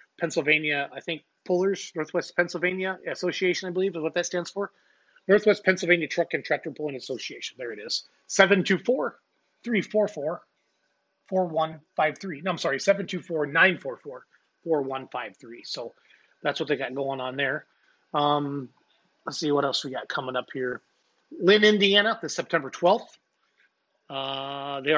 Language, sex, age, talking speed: English, male, 30-49, 140 wpm